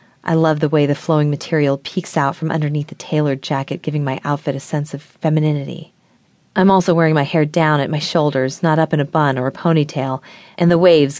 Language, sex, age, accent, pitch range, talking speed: English, female, 30-49, American, 140-165 Hz, 220 wpm